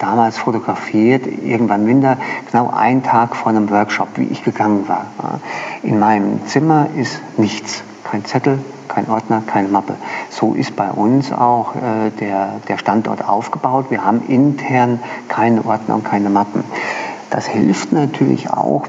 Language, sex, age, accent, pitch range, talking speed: German, male, 50-69, German, 110-135 Hz, 145 wpm